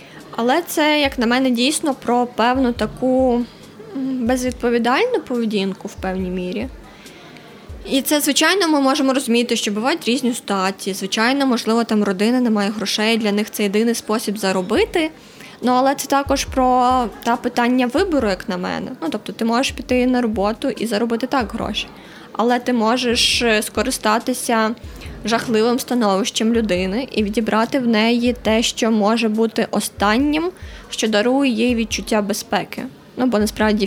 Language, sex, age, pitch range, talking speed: Ukrainian, female, 20-39, 215-255 Hz, 150 wpm